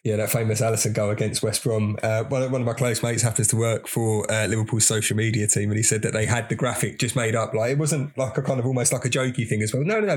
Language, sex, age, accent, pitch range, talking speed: English, male, 20-39, British, 115-140 Hz, 300 wpm